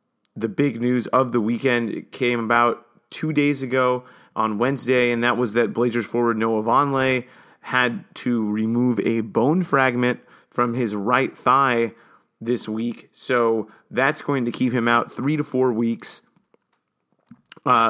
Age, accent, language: 30-49, American, English